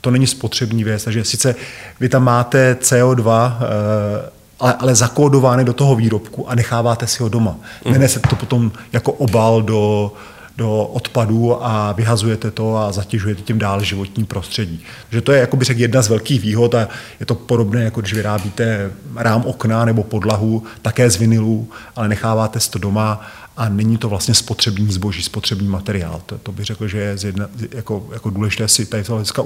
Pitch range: 105-120 Hz